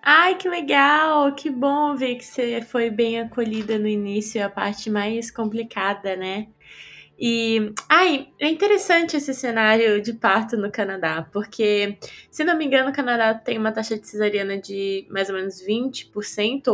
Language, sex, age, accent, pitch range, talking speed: Portuguese, female, 20-39, Brazilian, 210-255 Hz, 160 wpm